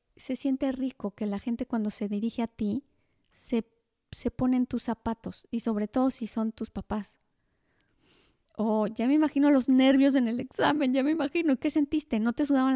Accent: Mexican